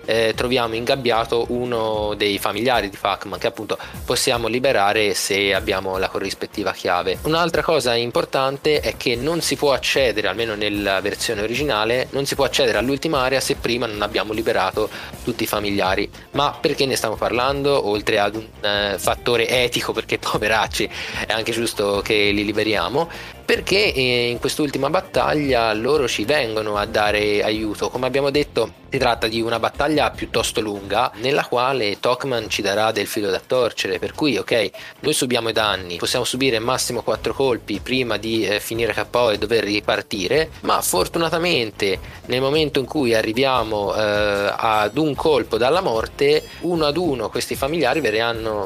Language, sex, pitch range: Italian, male, 105-140 Hz